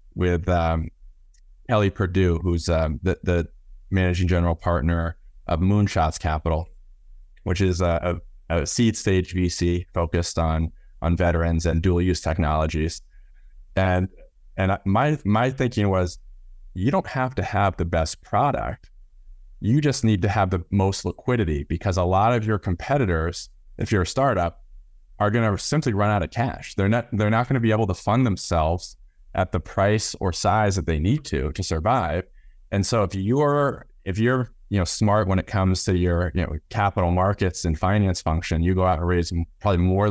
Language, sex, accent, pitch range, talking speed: English, male, American, 85-105 Hz, 180 wpm